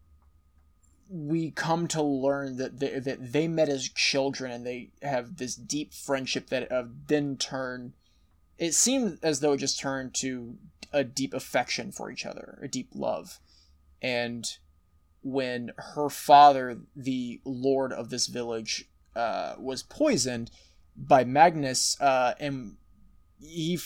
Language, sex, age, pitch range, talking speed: English, male, 20-39, 120-145 Hz, 140 wpm